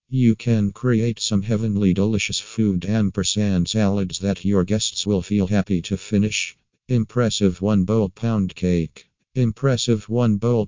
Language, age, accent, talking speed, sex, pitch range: English, 50-69, American, 140 wpm, male, 95-110 Hz